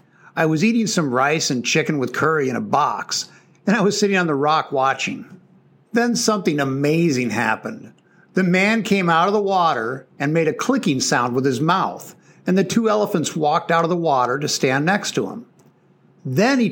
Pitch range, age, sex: 150-200 Hz, 60-79, male